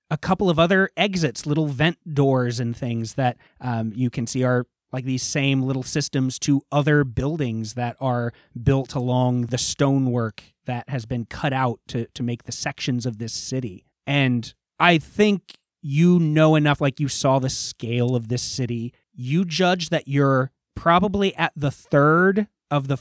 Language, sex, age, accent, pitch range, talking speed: English, male, 30-49, American, 120-150 Hz, 175 wpm